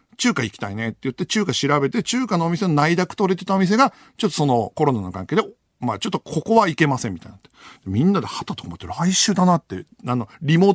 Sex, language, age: male, Japanese, 50-69